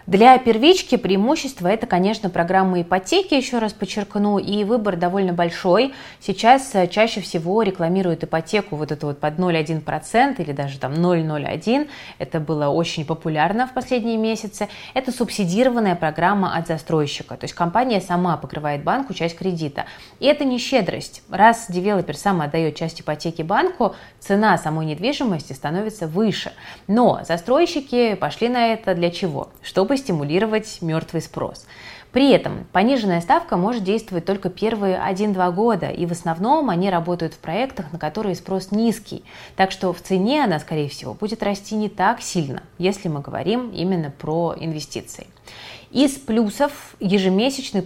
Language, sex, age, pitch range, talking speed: Russian, female, 20-39, 165-220 Hz, 145 wpm